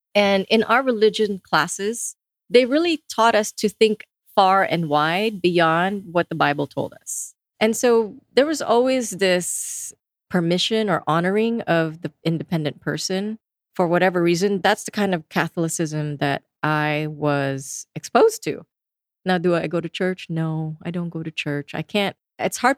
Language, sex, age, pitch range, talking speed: English, female, 30-49, 155-205 Hz, 165 wpm